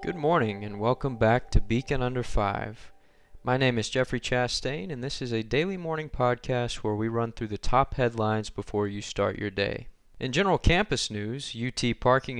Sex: male